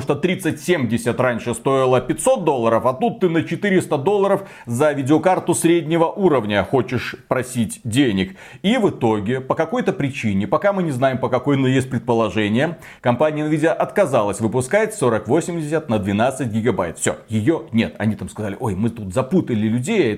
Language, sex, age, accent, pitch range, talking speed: Russian, male, 30-49, native, 115-170 Hz, 160 wpm